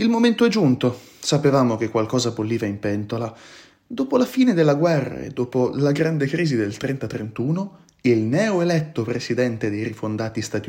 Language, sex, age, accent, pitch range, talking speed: Italian, male, 30-49, native, 110-170 Hz, 155 wpm